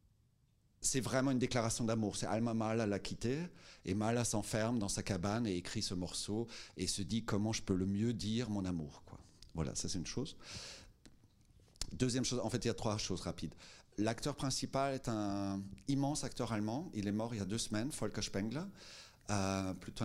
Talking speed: 200 wpm